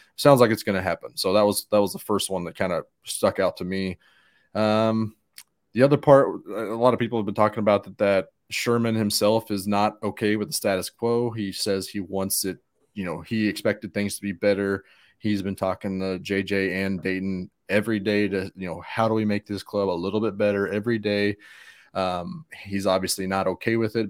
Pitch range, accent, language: 95-115 Hz, American, English